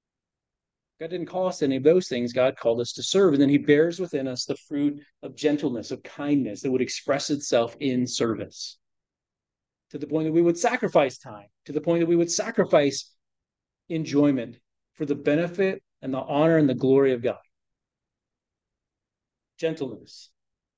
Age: 40-59